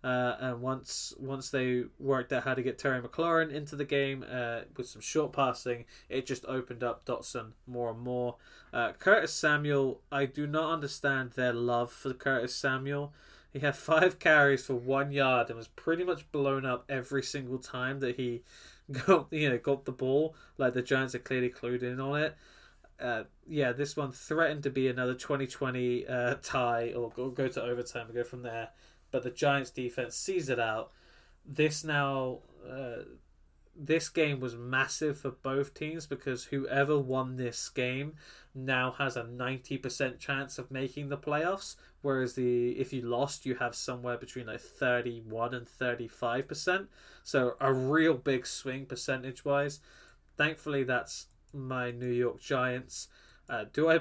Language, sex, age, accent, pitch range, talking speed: English, male, 20-39, British, 125-140 Hz, 175 wpm